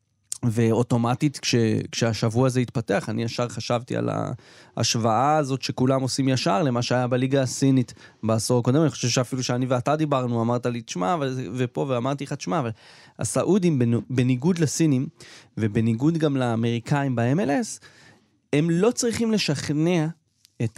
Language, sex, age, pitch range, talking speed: Hebrew, male, 20-39, 115-135 Hz, 130 wpm